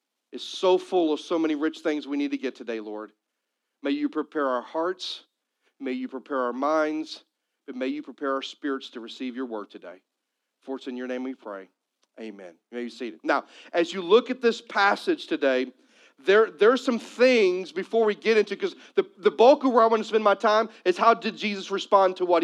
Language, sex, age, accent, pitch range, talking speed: English, male, 40-59, American, 170-240 Hz, 220 wpm